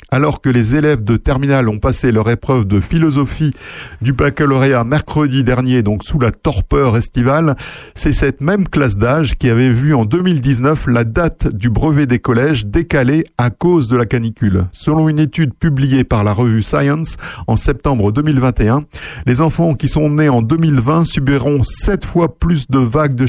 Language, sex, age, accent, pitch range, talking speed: French, male, 50-69, French, 120-155 Hz, 175 wpm